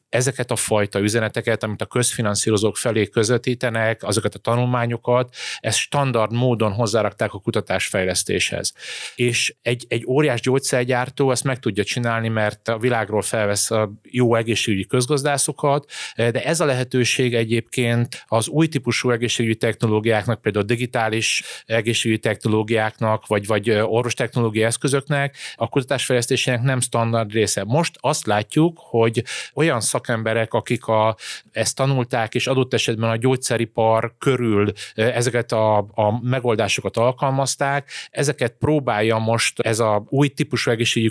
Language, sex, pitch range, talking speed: Hungarian, male, 110-125 Hz, 130 wpm